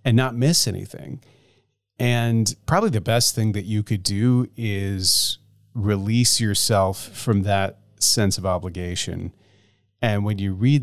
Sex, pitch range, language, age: male, 100-125 Hz, English, 40-59